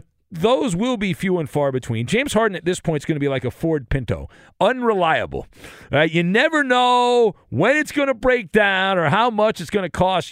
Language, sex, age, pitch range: English, male, 40-59, 130-180 Hz